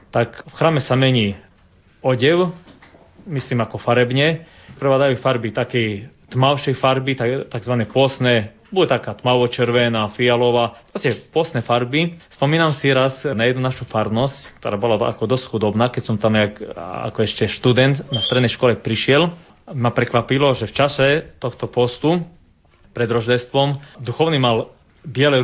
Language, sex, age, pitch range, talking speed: Slovak, male, 20-39, 115-140 Hz, 135 wpm